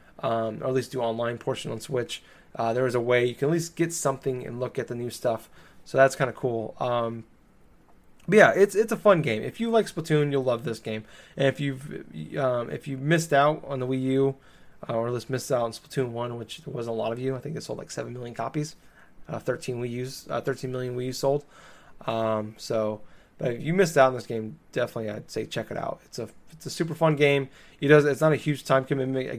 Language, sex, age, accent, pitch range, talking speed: English, male, 20-39, American, 115-140 Hz, 255 wpm